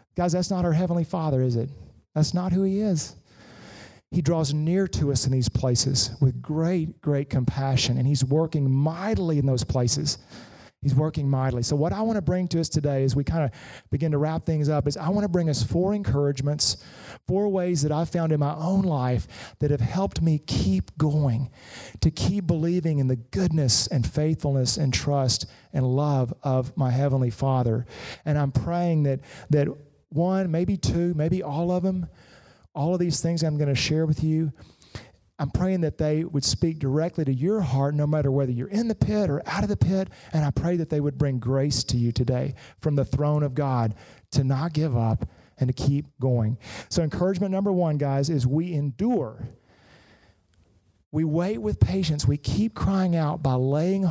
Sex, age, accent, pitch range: male, 40-59, American, 130-165 Hz